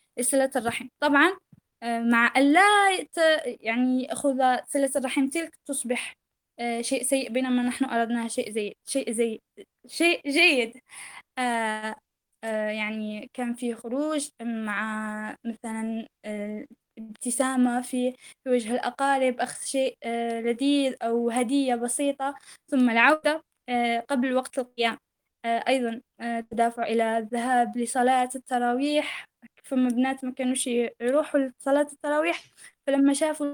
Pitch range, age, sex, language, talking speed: 240-280 Hz, 10-29, female, Arabic, 105 wpm